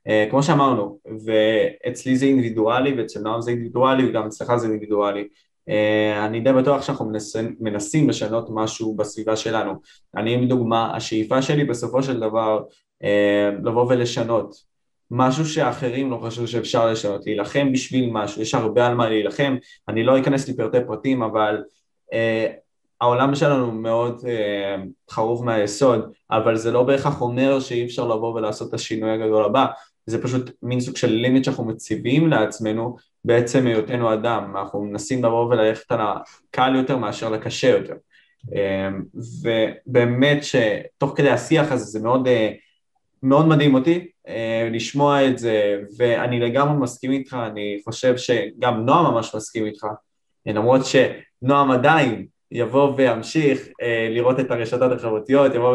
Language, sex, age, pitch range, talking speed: Hebrew, male, 20-39, 110-130 Hz, 140 wpm